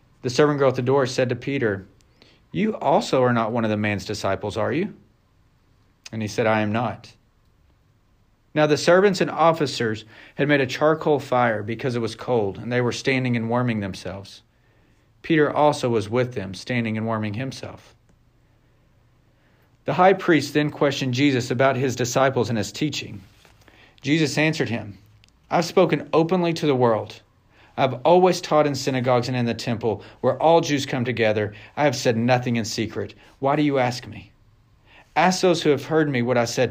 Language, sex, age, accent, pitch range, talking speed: English, male, 40-59, American, 110-135 Hz, 180 wpm